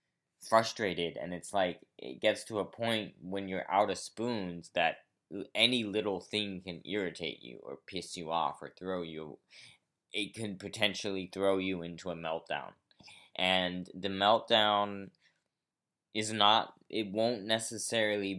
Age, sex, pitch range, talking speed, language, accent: 20-39, male, 90-110 Hz, 145 wpm, English, American